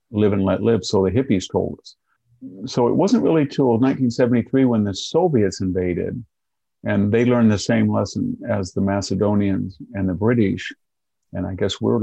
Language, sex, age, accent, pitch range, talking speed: English, male, 50-69, American, 95-120 Hz, 175 wpm